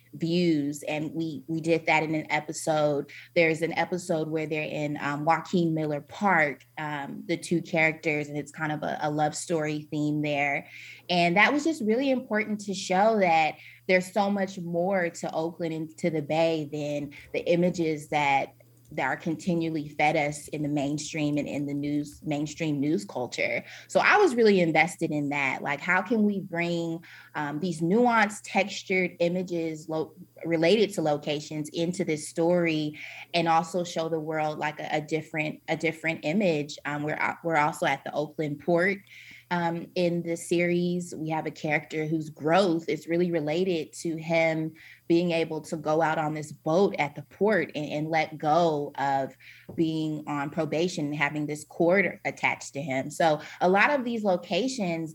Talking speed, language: 175 wpm, English